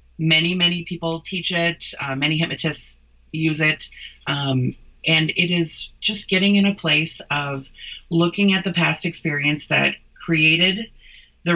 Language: English